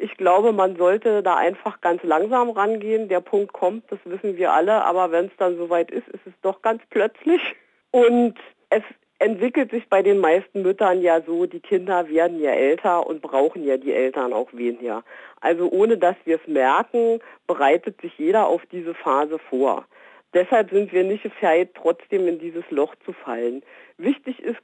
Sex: female